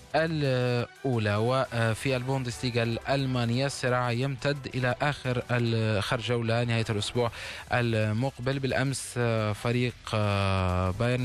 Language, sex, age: Arabic, male, 20-39